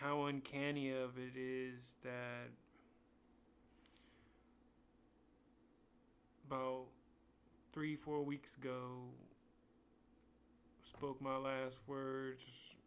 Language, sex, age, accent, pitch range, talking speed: English, male, 30-49, American, 125-150 Hz, 70 wpm